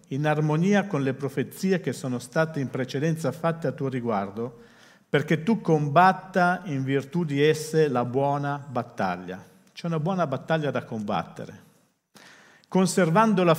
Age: 50-69